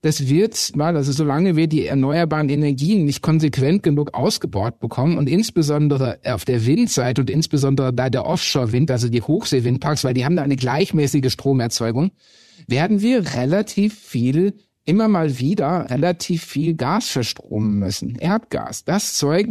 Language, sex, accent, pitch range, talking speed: German, male, German, 125-170 Hz, 150 wpm